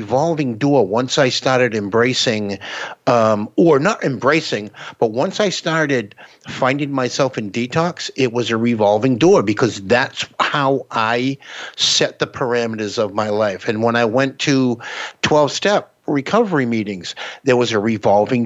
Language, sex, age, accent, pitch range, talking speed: English, male, 50-69, American, 115-150 Hz, 145 wpm